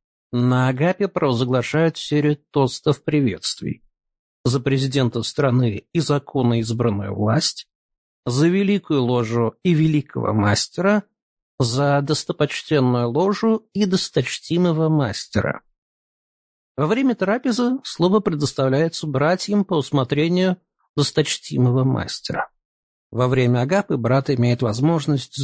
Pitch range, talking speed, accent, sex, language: 125-165 Hz, 95 wpm, native, male, Russian